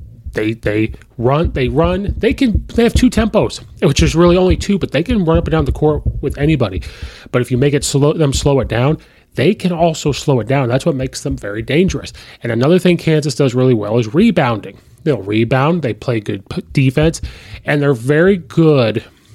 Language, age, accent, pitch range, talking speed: English, 30-49, American, 115-155 Hz, 215 wpm